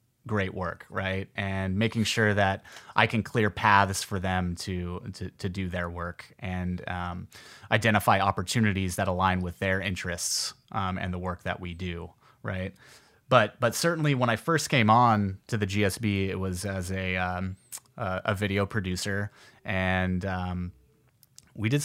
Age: 30-49